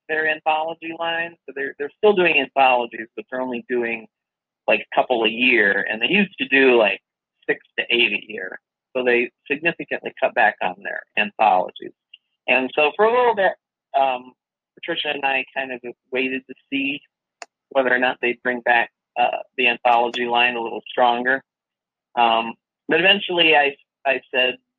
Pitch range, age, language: 120-160 Hz, 50-69, English